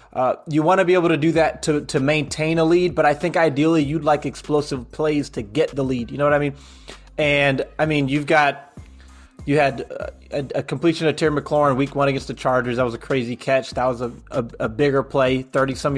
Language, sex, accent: English, male, American